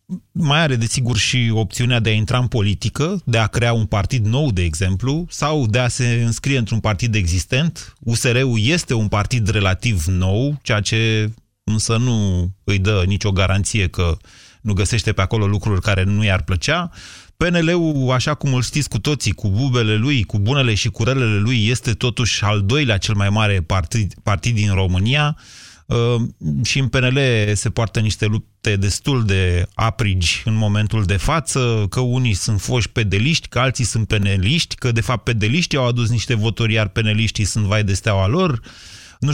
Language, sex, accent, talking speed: Romanian, male, native, 180 wpm